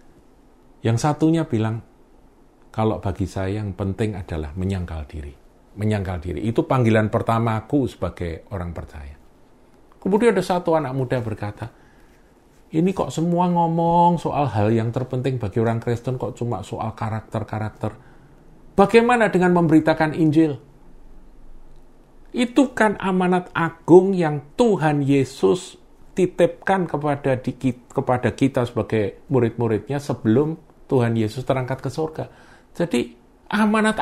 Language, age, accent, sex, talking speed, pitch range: Indonesian, 50-69, native, male, 115 wpm, 115-170 Hz